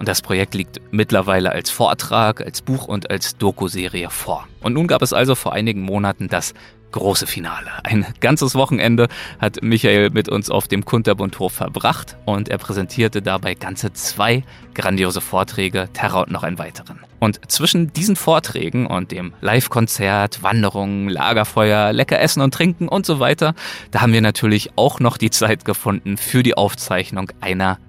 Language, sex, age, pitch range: German, male, 20-39, 100-130 Hz